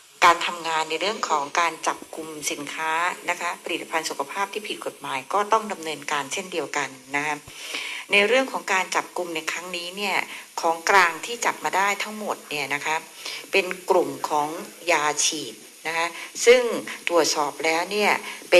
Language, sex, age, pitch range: Thai, female, 60-79, 160-235 Hz